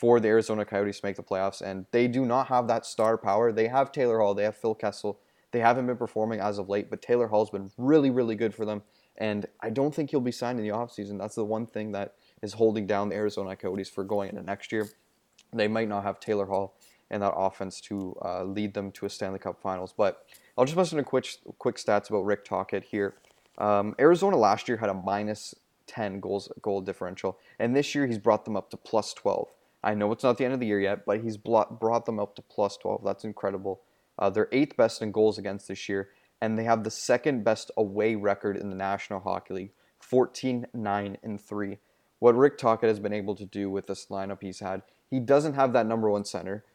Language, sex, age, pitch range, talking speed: English, male, 20-39, 100-115 Hz, 230 wpm